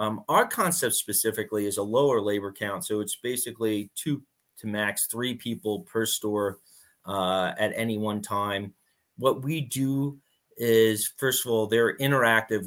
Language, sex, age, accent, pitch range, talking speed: English, male, 30-49, American, 100-120 Hz, 155 wpm